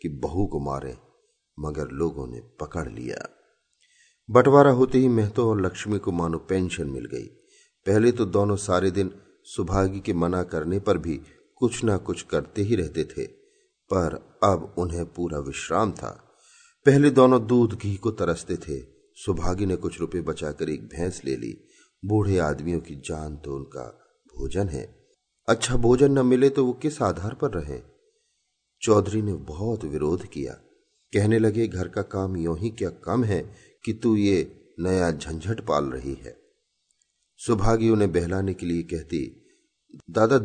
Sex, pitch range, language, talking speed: male, 90-125 Hz, Hindi, 160 wpm